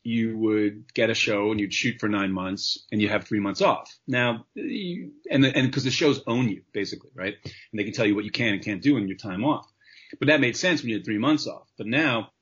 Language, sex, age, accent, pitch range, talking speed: English, male, 30-49, American, 105-145 Hz, 270 wpm